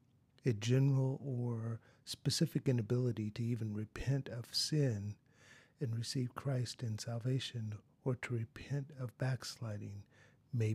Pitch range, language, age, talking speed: 115-135 Hz, English, 50-69, 115 wpm